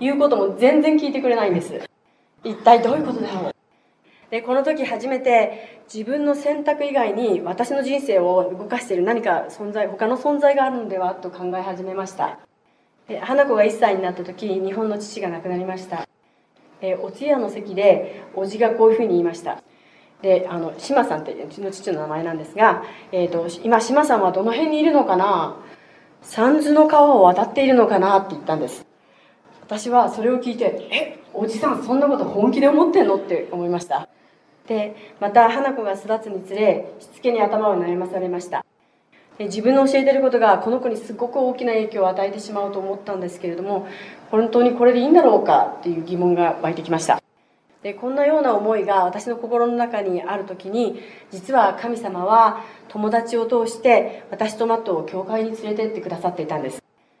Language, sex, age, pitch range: English, female, 30-49, 190-245 Hz